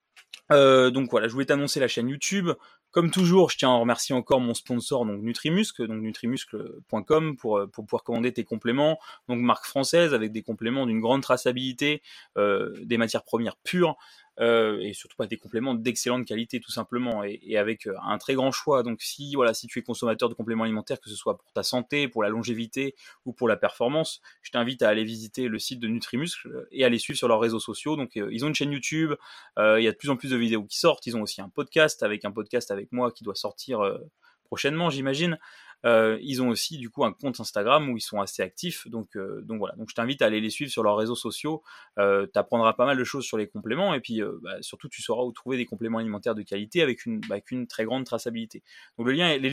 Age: 20-39